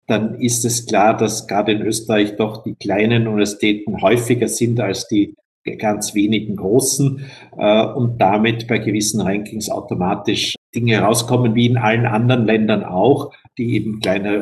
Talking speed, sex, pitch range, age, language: 150 wpm, male, 110-130 Hz, 50-69, German